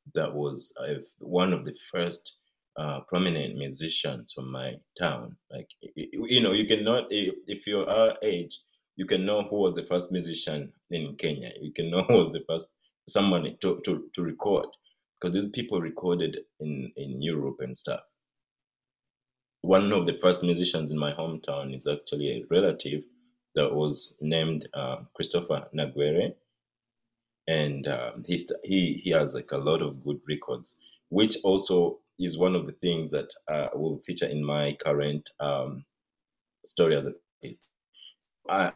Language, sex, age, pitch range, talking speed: English, male, 30-49, 75-90 Hz, 160 wpm